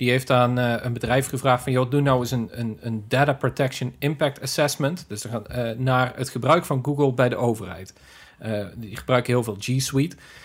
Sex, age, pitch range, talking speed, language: male, 40-59, 125-150 Hz, 190 wpm, Dutch